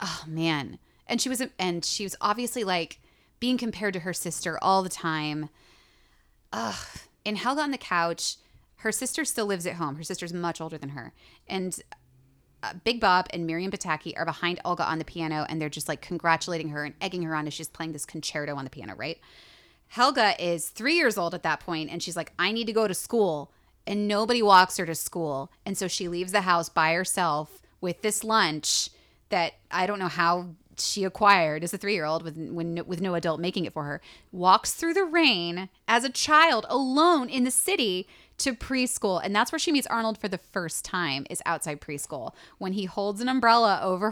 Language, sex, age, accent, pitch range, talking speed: English, female, 20-39, American, 165-215 Hz, 205 wpm